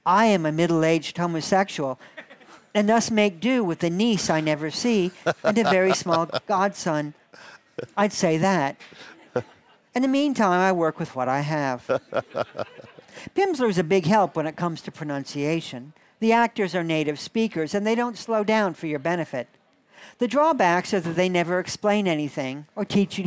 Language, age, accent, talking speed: English, 50-69, American, 170 wpm